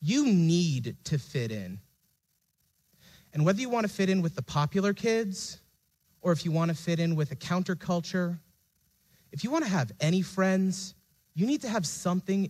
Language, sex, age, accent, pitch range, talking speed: English, male, 30-49, American, 135-185 Hz, 185 wpm